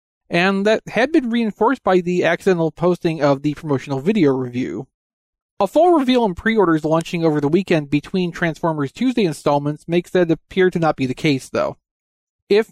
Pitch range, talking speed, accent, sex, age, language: 140-195 Hz, 175 wpm, American, male, 40-59, English